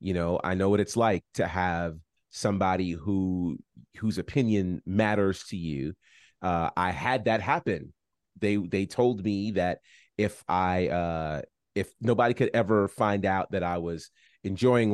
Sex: male